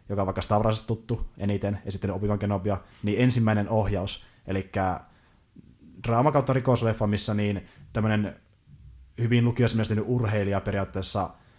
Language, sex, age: Finnish, male, 20-39